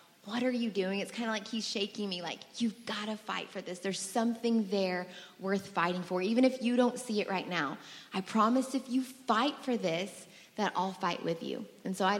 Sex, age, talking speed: female, 20-39, 230 wpm